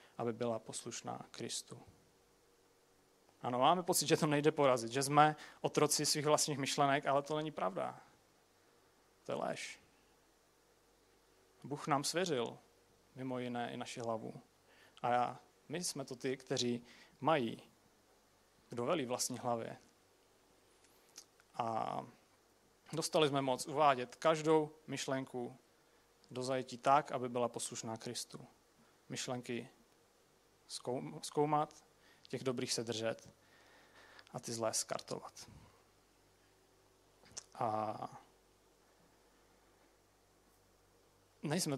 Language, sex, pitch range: Czech, male, 120-145 Hz